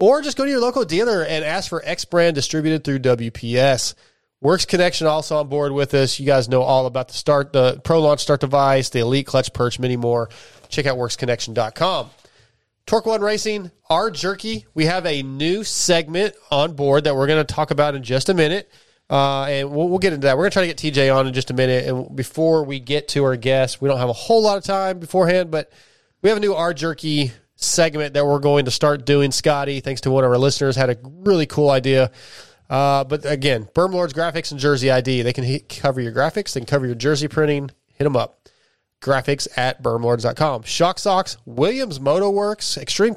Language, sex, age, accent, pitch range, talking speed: English, male, 30-49, American, 130-165 Hz, 220 wpm